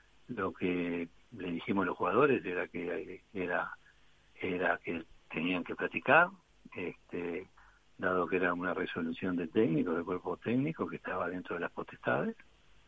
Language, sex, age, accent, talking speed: Spanish, male, 60-79, Argentinian, 150 wpm